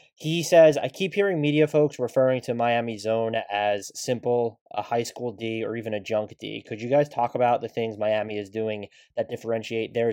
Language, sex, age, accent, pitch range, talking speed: English, male, 20-39, American, 110-135 Hz, 205 wpm